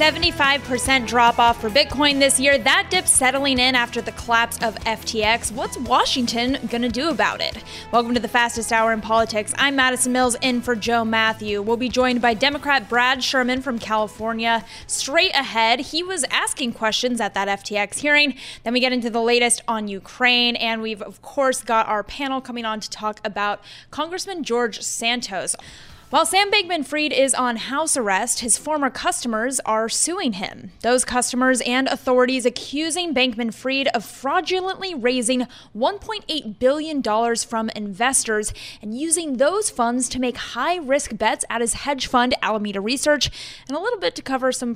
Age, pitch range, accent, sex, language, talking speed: 20-39, 225-270 Hz, American, female, English, 170 wpm